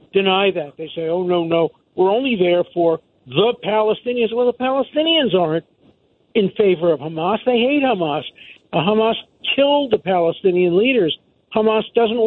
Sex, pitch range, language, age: male, 175-230 Hz, English, 50-69